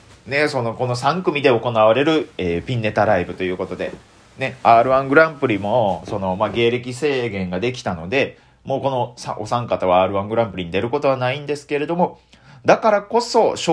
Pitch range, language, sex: 95-160 Hz, Japanese, male